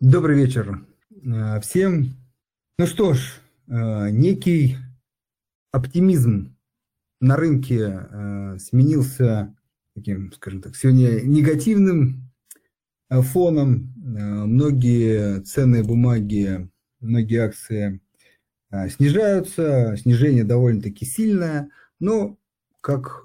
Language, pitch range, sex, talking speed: Russian, 110-140 Hz, male, 70 wpm